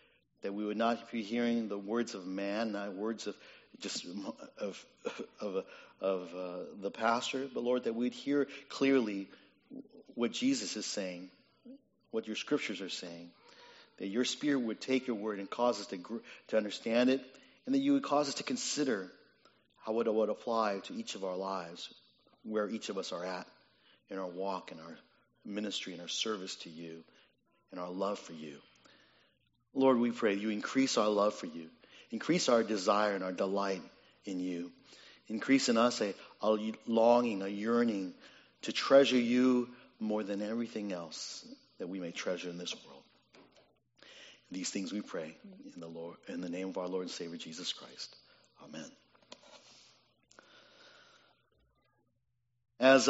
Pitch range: 100-125 Hz